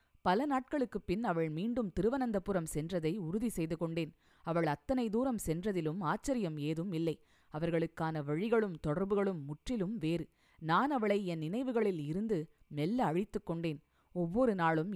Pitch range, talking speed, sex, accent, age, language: 165-225 Hz, 125 wpm, female, native, 20-39, Tamil